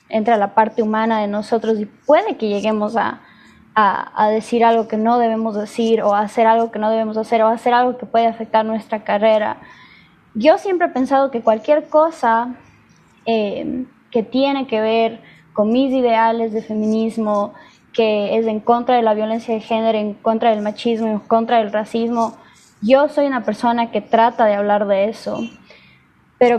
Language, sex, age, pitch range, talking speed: Spanish, female, 20-39, 215-240 Hz, 180 wpm